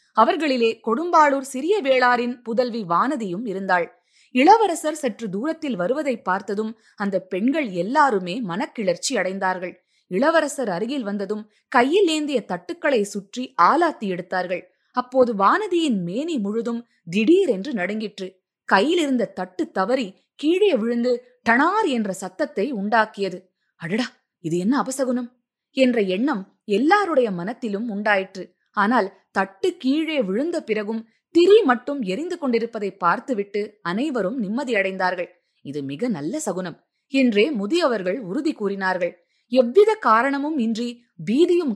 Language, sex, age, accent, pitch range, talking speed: Tamil, female, 20-39, native, 195-270 Hz, 110 wpm